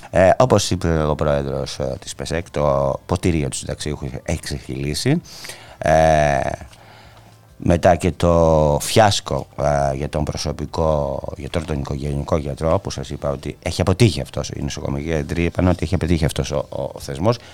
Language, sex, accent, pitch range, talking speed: Greek, male, Spanish, 70-90 Hz, 140 wpm